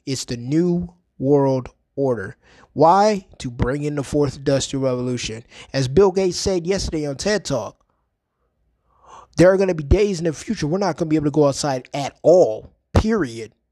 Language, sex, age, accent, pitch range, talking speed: English, male, 20-39, American, 155-215 Hz, 185 wpm